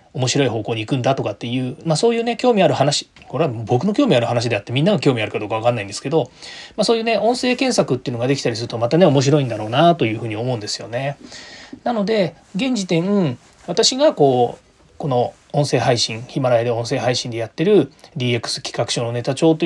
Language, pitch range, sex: Japanese, 120-175 Hz, male